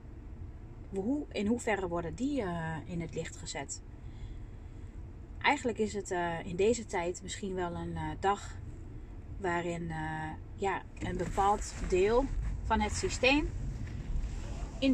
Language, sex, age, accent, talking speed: Dutch, female, 30-49, Dutch, 125 wpm